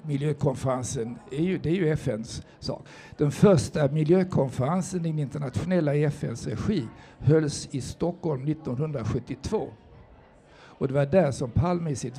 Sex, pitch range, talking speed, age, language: male, 135-160 Hz, 140 wpm, 60-79, Swedish